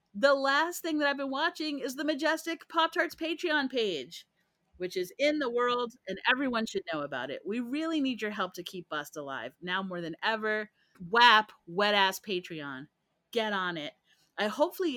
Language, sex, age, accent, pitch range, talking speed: English, female, 30-49, American, 175-240 Hz, 180 wpm